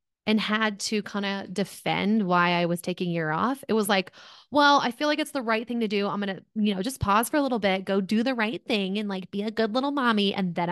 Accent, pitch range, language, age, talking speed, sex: American, 185-220 Hz, English, 20-39, 280 wpm, female